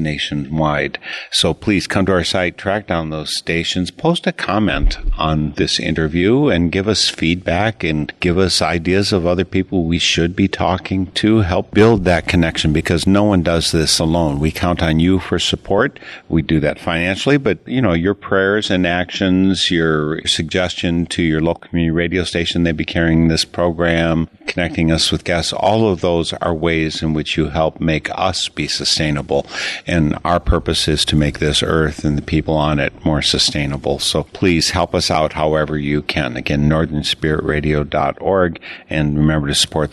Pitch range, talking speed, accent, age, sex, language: 80-95 Hz, 180 wpm, American, 50-69, male, English